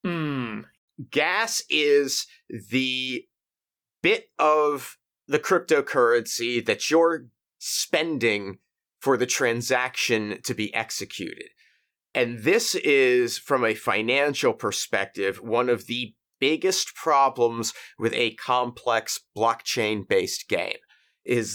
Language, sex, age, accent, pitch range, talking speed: English, male, 30-49, American, 120-160 Hz, 95 wpm